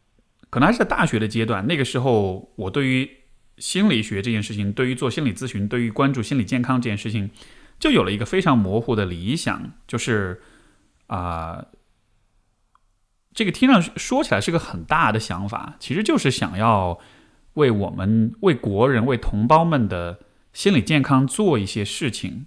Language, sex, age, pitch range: Chinese, male, 20-39, 100-130 Hz